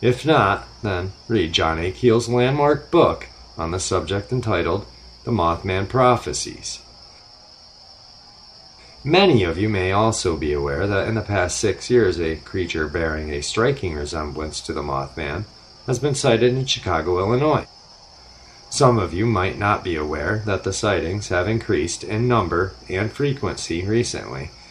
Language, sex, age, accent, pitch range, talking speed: English, male, 40-59, American, 80-115 Hz, 150 wpm